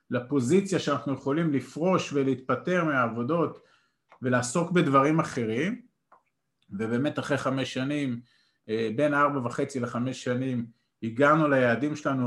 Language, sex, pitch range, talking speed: Hebrew, male, 125-155 Hz, 105 wpm